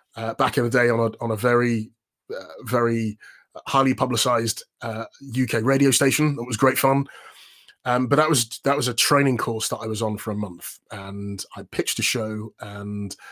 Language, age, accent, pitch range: English, 20-39, British, 115-135 Hz